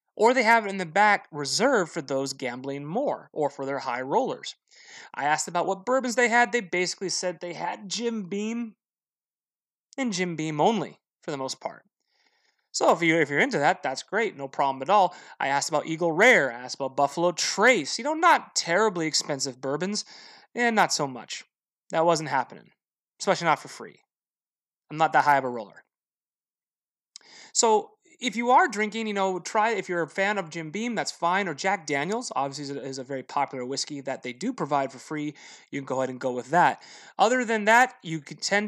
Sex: male